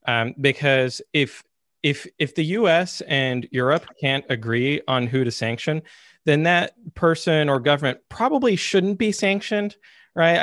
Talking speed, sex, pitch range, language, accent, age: 145 wpm, male, 120-150 Hz, English, American, 30-49